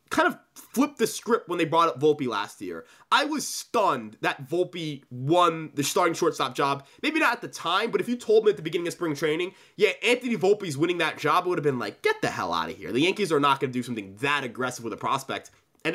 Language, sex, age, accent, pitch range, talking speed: English, male, 20-39, American, 160-230 Hz, 260 wpm